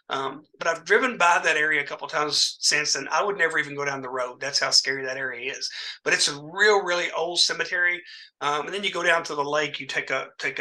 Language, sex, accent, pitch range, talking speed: English, male, American, 140-170 Hz, 265 wpm